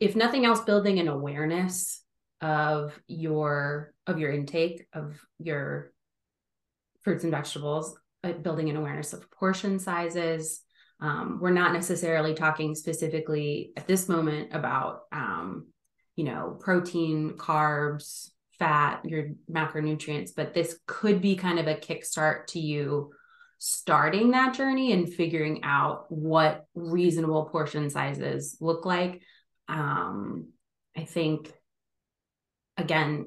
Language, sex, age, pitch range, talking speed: English, female, 20-39, 155-200 Hz, 120 wpm